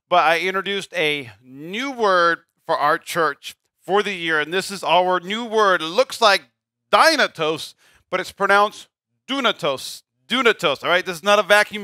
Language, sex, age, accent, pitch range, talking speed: English, male, 40-59, American, 155-205 Hz, 170 wpm